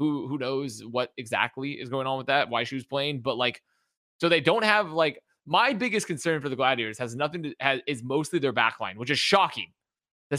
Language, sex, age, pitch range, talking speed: English, male, 20-39, 125-165 Hz, 225 wpm